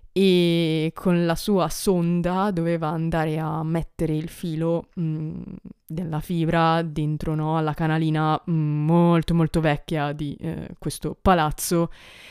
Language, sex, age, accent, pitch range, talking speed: Italian, female, 20-39, native, 155-175 Hz, 110 wpm